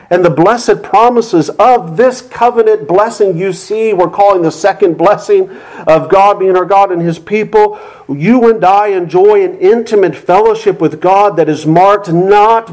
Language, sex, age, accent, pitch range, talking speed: English, male, 50-69, American, 185-275 Hz, 170 wpm